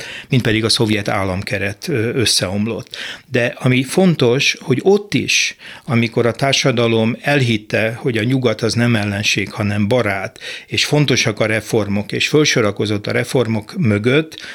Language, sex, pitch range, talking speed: Hungarian, male, 105-125 Hz, 135 wpm